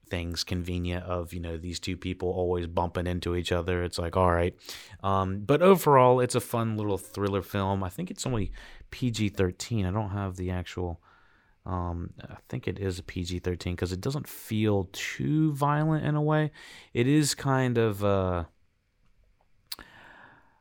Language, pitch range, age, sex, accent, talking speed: English, 90-110 Hz, 30-49, male, American, 170 wpm